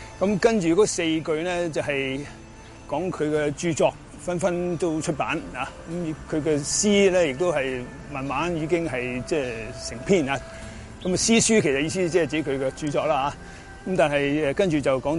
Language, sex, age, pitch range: Chinese, male, 30-49, 135-165 Hz